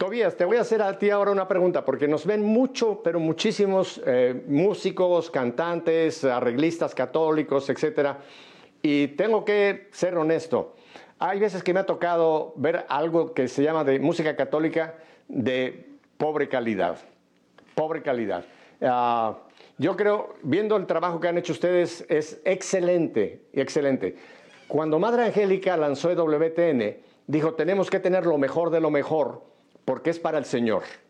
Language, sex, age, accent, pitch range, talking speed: Spanish, male, 50-69, Mexican, 145-185 Hz, 150 wpm